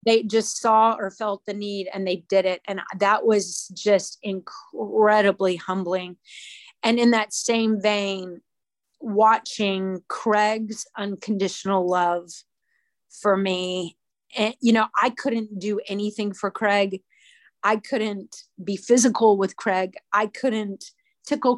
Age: 30-49